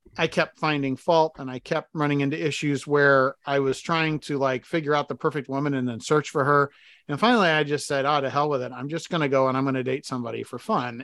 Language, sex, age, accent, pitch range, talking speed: English, male, 40-59, American, 135-165 Hz, 265 wpm